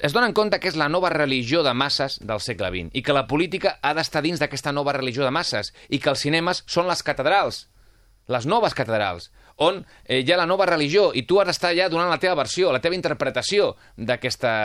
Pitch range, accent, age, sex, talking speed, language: 110-175 Hz, Spanish, 30-49, male, 225 wpm, Spanish